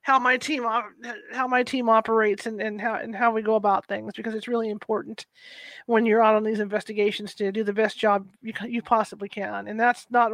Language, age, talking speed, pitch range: English, 40-59, 220 wpm, 220-255 Hz